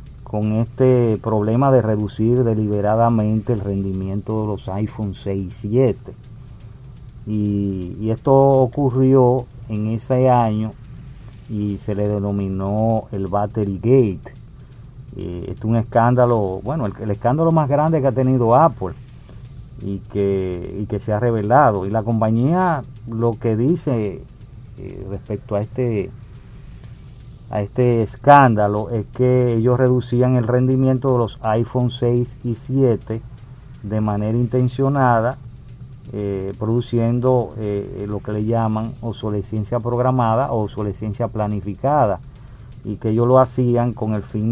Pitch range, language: 105-125 Hz, Spanish